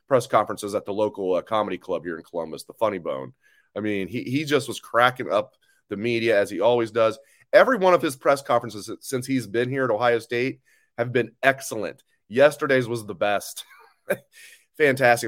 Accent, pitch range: American, 115-140 Hz